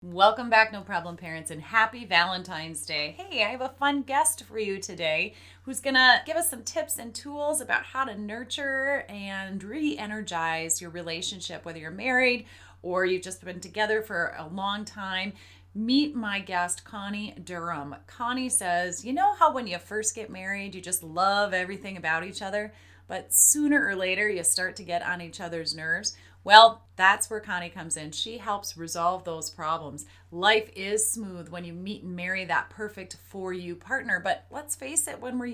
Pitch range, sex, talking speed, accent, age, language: 175-230 Hz, female, 185 wpm, American, 30-49, English